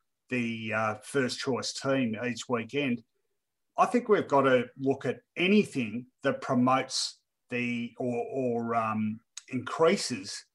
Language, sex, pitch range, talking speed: English, male, 120-165 Hz, 125 wpm